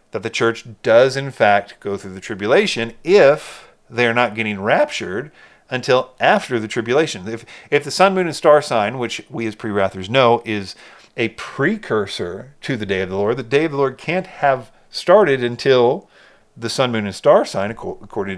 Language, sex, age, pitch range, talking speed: English, male, 40-59, 105-130 Hz, 190 wpm